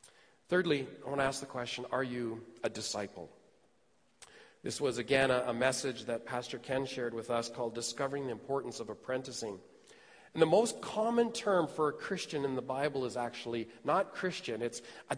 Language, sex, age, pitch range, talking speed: English, male, 40-59, 130-195 Hz, 180 wpm